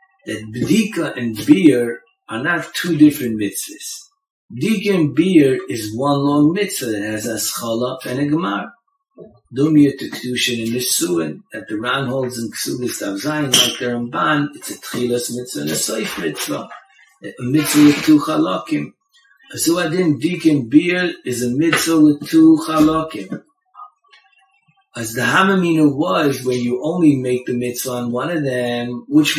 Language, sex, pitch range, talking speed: English, male, 125-200 Hz, 155 wpm